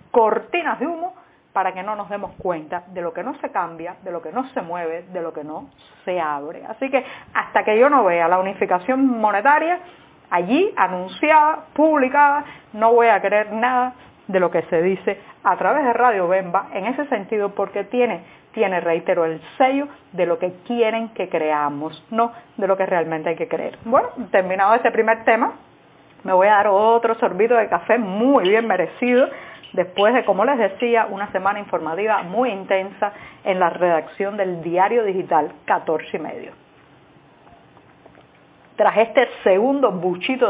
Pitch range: 185-250 Hz